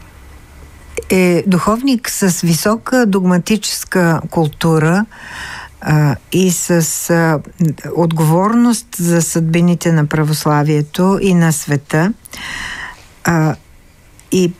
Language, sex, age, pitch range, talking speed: Bulgarian, female, 60-79, 155-190 Hz, 80 wpm